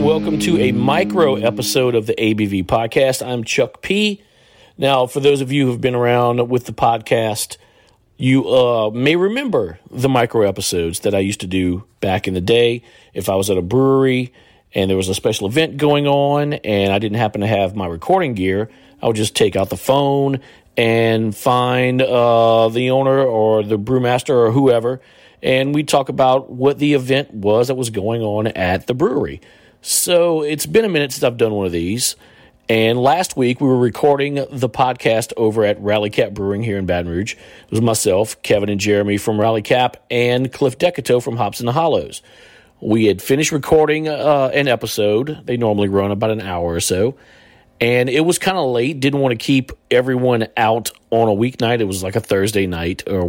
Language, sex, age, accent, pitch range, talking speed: English, male, 40-59, American, 105-135 Hz, 195 wpm